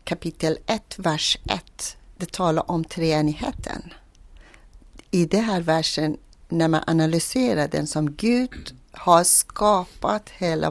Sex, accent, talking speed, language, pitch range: female, native, 120 wpm, Swedish, 160-195 Hz